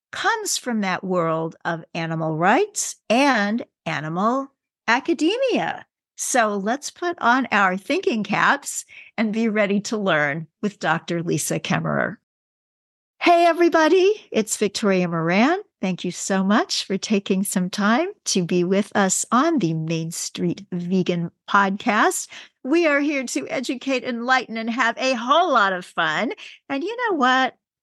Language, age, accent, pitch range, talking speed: English, 50-69, American, 180-255 Hz, 140 wpm